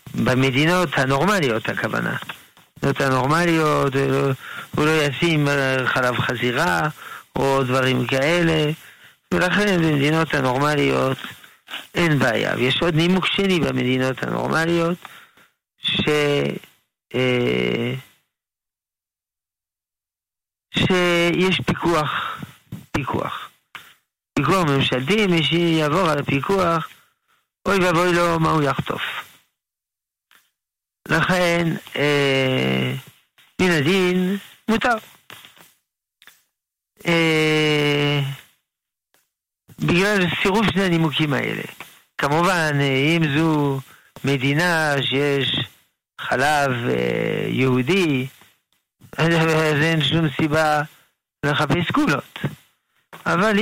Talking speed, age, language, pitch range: 75 wpm, 50-69, Hebrew, 135-175 Hz